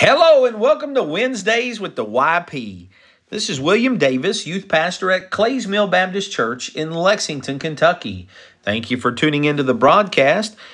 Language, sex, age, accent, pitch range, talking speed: English, male, 40-59, American, 115-160 Hz, 160 wpm